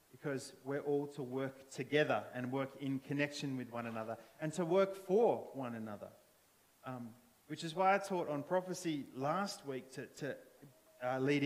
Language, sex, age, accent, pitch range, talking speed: English, male, 30-49, Australian, 130-160 Hz, 175 wpm